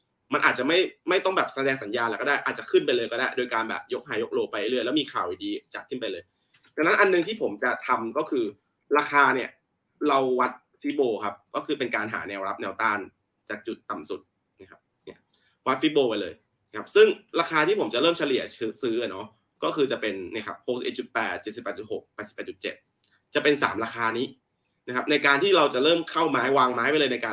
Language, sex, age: Thai, male, 20-39